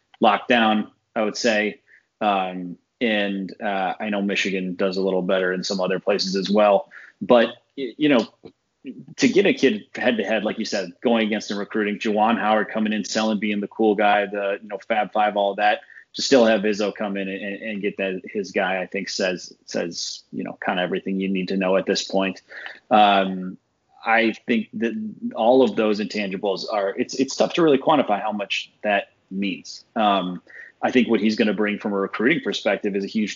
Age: 30-49